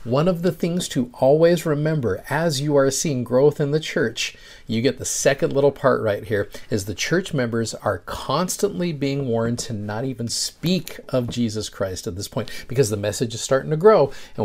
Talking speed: 205 wpm